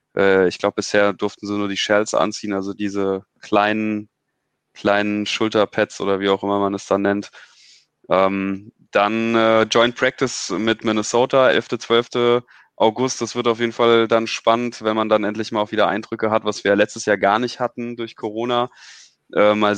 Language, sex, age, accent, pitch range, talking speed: English, male, 20-39, German, 100-115 Hz, 180 wpm